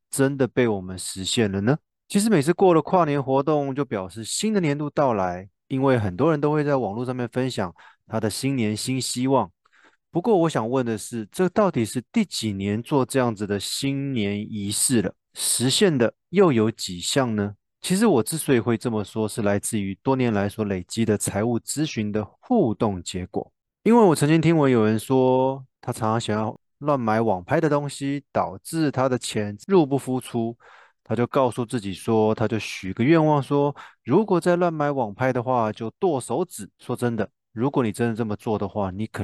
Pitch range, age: 105-140 Hz, 20-39